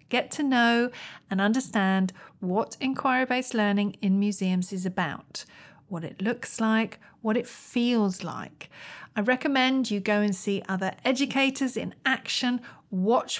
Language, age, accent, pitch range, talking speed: English, 40-59, British, 190-250 Hz, 140 wpm